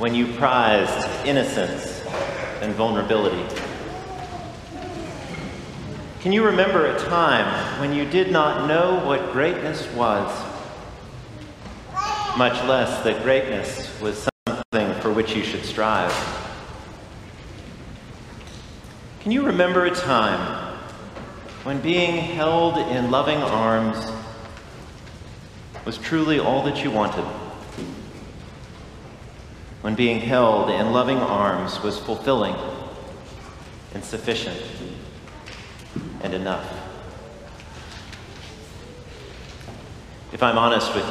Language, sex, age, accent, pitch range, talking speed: English, male, 50-69, American, 105-145 Hz, 90 wpm